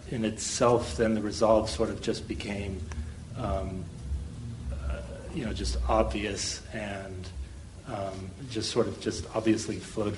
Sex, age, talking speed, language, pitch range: male, 40-59, 135 wpm, English, 100-115 Hz